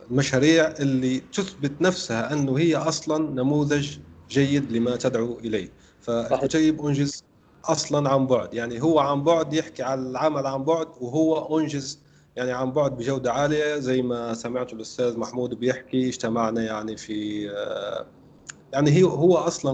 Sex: male